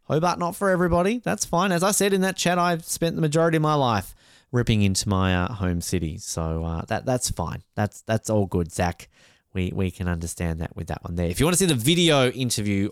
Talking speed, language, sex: 240 wpm, English, male